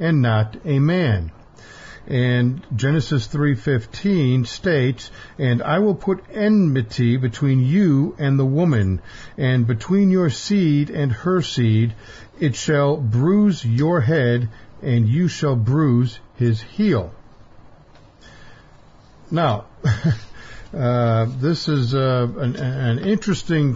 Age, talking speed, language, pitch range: 50-69, 115 wpm, English, 115-155 Hz